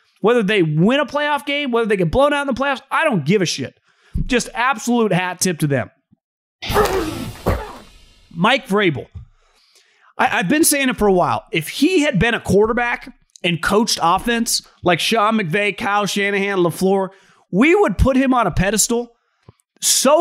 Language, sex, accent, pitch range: English, male, American, 190-285 Hz